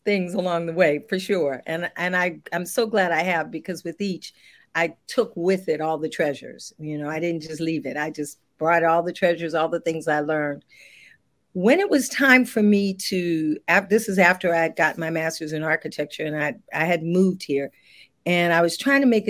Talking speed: 220 wpm